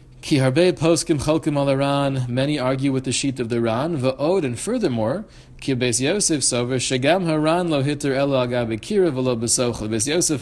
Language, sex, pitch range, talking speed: English, male, 125-145 Hz, 130 wpm